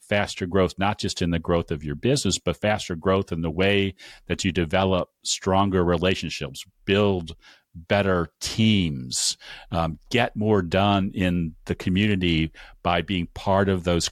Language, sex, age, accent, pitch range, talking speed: English, male, 40-59, American, 85-100 Hz, 155 wpm